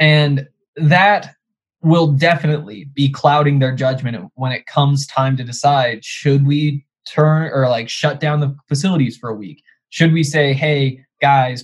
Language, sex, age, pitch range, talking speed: English, male, 20-39, 140-170 Hz, 160 wpm